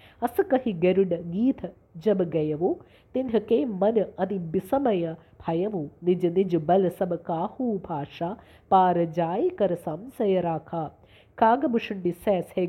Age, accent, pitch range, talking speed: 50-69, Indian, 175-215 Hz, 100 wpm